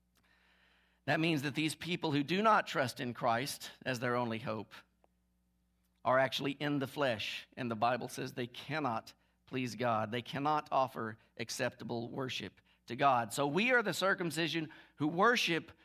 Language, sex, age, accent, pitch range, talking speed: English, male, 50-69, American, 120-170 Hz, 160 wpm